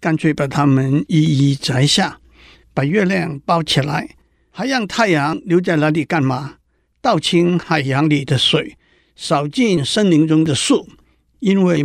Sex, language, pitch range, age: male, Chinese, 145-185 Hz, 60-79